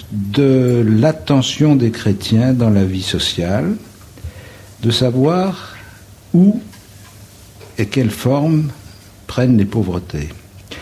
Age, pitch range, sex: 60-79, 100-130 Hz, male